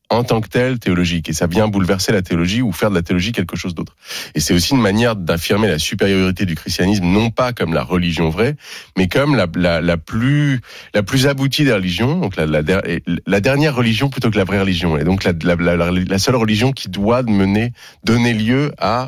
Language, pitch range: French, 80-115 Hz